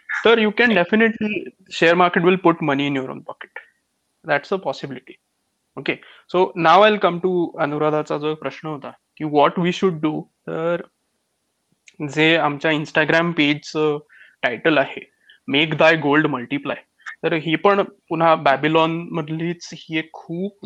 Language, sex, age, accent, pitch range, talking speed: Marathi, male, 20-39, native, 150-185 Hz, 145 wpm